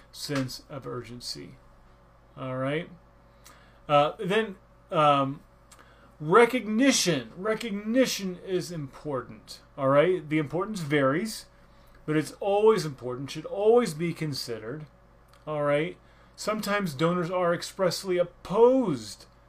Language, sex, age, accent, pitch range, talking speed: English, male, 30-49, American, 120-170 Hz, 100 wpm